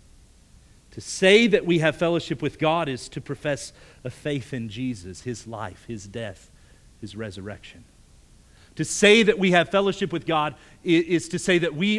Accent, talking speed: American, 170 wpm